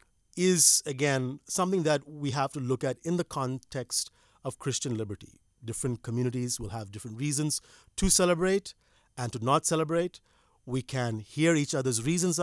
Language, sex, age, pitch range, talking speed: English, male, 50-69, 120-150 Hz, 160 wpm